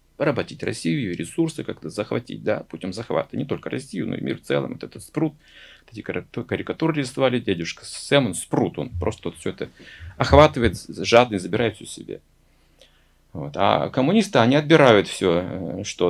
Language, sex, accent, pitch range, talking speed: Russian, male, native, 90-150 Hz, 170 wpm